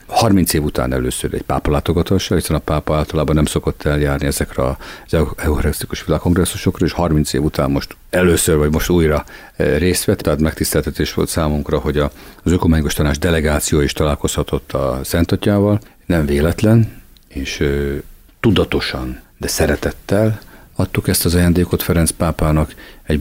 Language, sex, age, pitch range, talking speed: Hungarian, male, 50-69, 70-90 Hz, 140 wpm